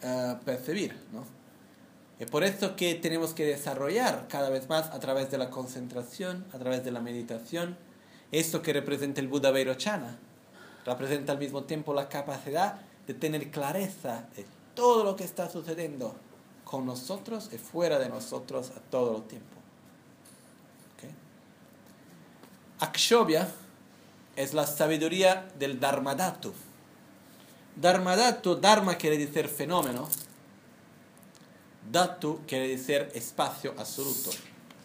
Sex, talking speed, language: male, 125 wpm, Italian